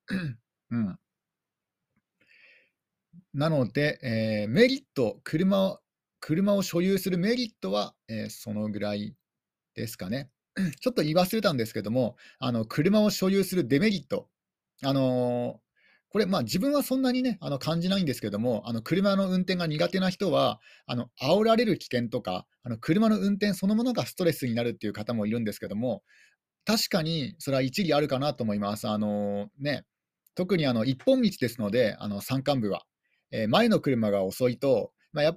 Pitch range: 120-200 Hz